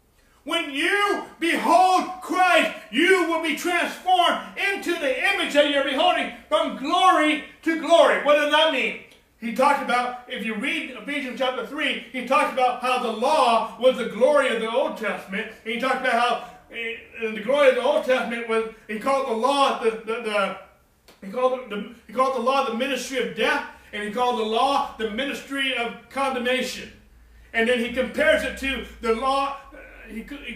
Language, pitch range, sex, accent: English, 225-280 Hz, male, American